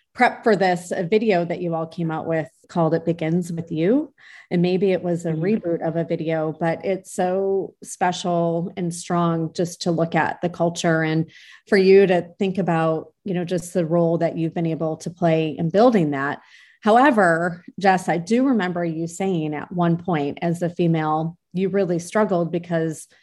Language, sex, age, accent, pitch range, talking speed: English, female, 30-49, American, 165-195 Hz, 190 wpm